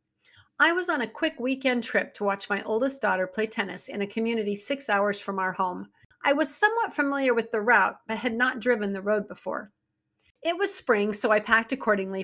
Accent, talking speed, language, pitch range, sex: American, 210 wpm, English, 200-255 Hz, female